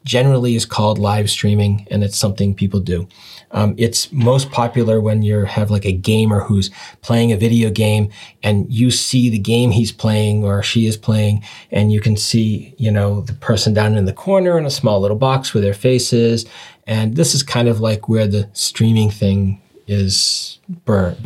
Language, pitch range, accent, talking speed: English, 105-135 Hz, American, 190 wpm